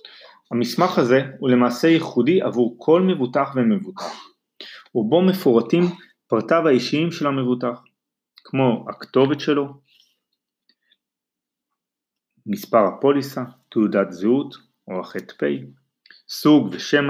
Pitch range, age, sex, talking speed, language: 120-160 Hz, 30-49, male, 90 wpm, Hebrew